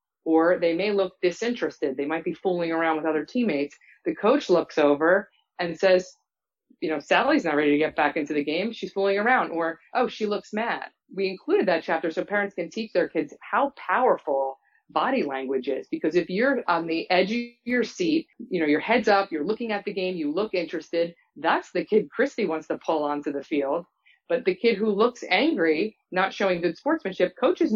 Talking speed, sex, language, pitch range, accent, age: 210 wpm, female, English, 160-210 Hz, American, 30-49